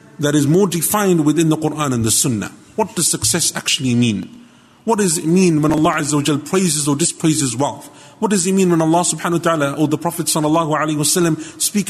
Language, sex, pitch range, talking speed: English, male, 135-165 Hz, 195 wpm